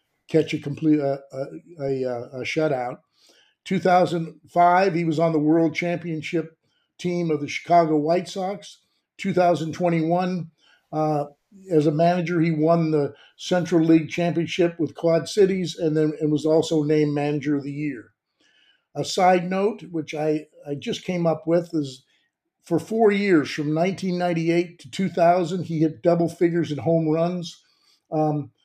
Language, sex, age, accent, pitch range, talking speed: English, male, 50-69, American, 145-170 Hz, 165 wpm